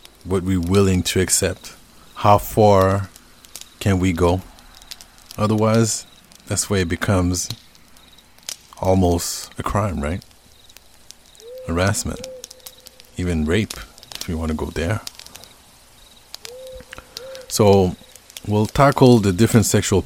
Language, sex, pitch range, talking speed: English, male, 85-115 Hz, 100 wpm